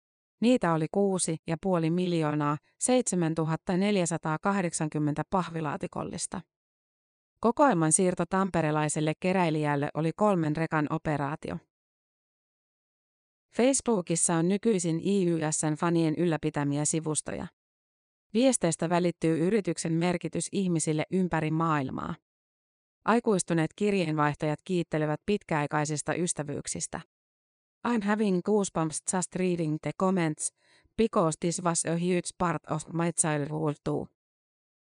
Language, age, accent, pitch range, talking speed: Finnish, 30-49, native, 155-185 Hz, 80 wpm